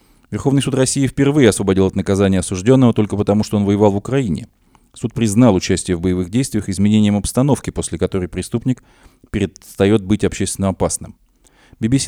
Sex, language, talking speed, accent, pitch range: male, Russian, 155 wpm, native, 100-125 Hz